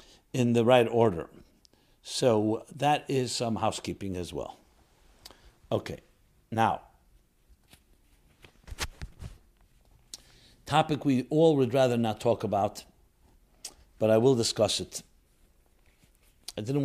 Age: 60-79